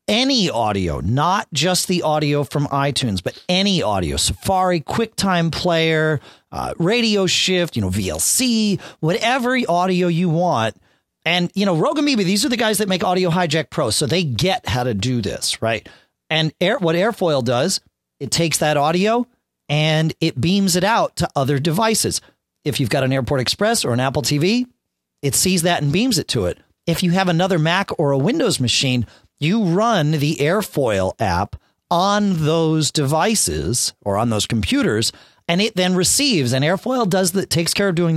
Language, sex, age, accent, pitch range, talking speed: English, male, 40-59, American, 120-185 Hz, 175 wpm